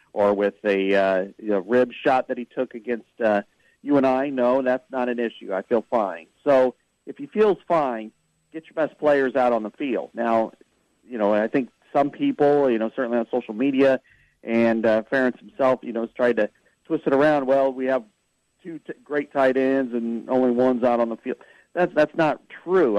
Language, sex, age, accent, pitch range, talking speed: English, male, 50-69, American, 110-135 Hz, 200 wpm